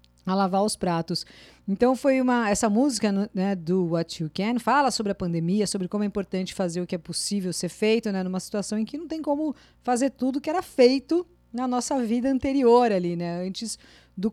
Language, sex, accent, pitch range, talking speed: Portuguese, female, Brazilian, 185-230 Hz, 210 wpm